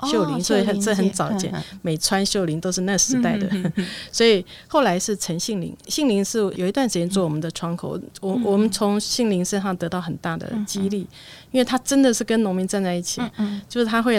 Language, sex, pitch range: Chinese, female, 175-210 Hz